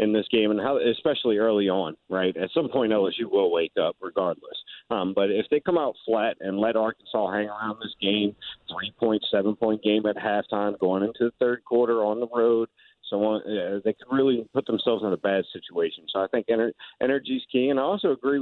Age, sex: 50-69, male